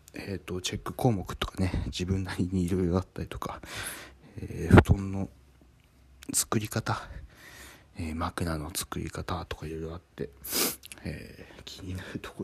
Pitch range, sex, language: 85-120 Hz, male, Japanese